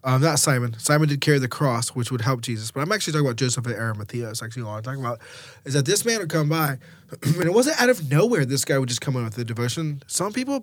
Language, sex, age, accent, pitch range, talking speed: English, male, 20-39, American, 125-155 Hz, 280 wpm